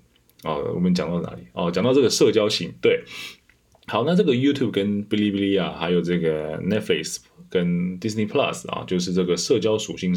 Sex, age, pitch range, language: male, 20-39, 85-110 Hz, Chinese